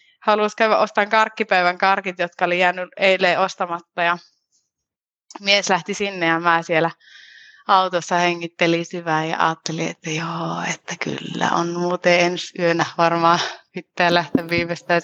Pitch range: 160-195 Hz